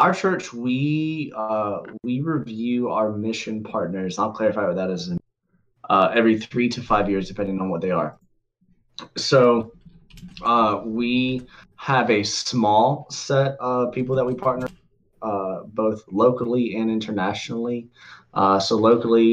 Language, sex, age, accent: English, male, 20-39, American